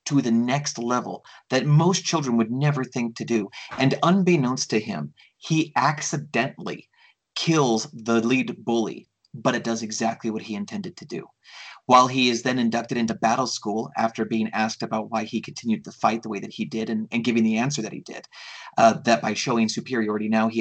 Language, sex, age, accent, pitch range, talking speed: English, male, 30-49, American, 115-130 Hz, 200 wpm